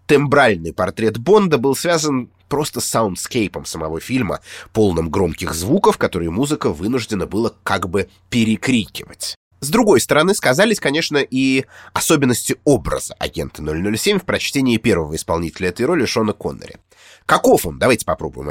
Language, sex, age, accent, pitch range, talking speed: Russian, male, 30-49, native, 90-120 Hz, 135 wpm